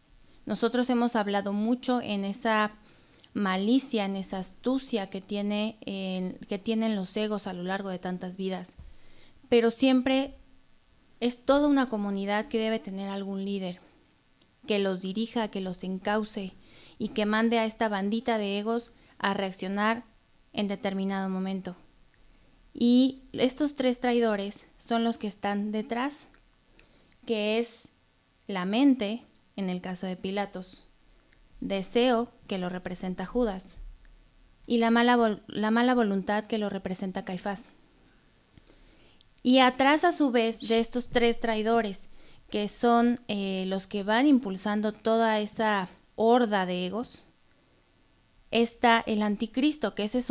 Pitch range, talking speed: 195-235 Hz, 130 wpm